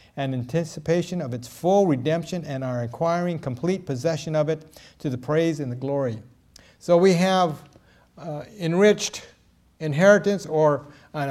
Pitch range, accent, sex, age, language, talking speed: 125-170 Hz, American, male, 60-79, English, 145 wpm